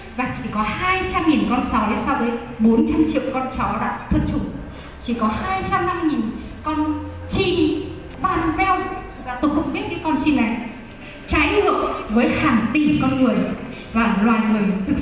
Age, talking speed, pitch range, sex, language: 20-39, 185 wpm, 230-290 Hz, female, Vietnamese